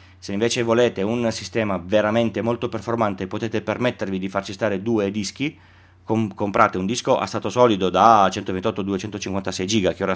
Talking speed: 150 wpm